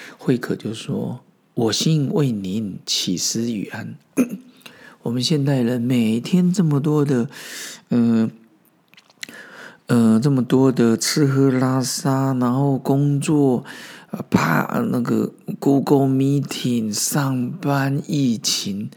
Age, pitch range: 50-69, 120-170 Hz